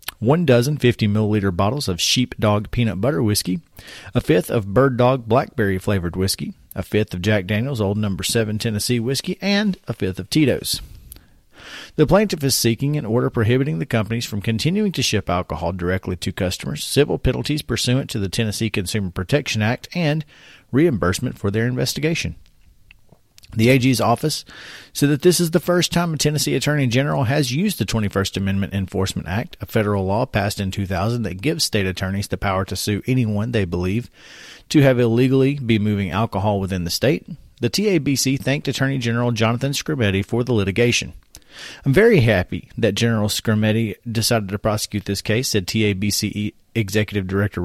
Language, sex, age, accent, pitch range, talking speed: English, male, 40-59, American, 100-135 Hz, 170 wpm